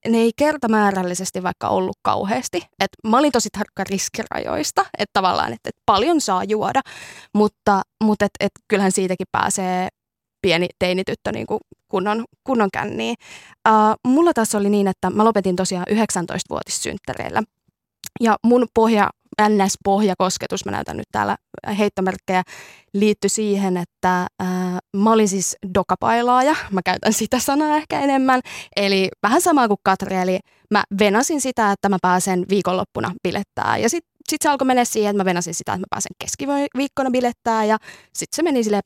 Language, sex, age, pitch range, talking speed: Finnish, female, 20-39, 190-230 Hz, 160 wpm